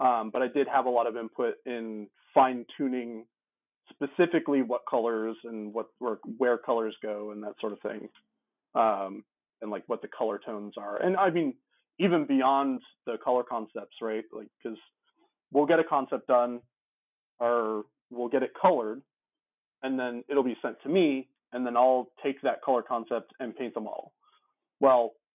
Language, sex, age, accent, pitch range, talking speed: English, male, 40-59, American, 115-145 Hz, 170 wpm